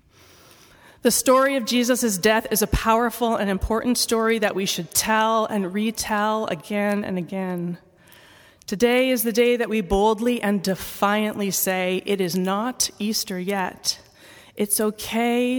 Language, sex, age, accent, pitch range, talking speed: English, female, 30-49, American, 205-245 Hz, 140 wpm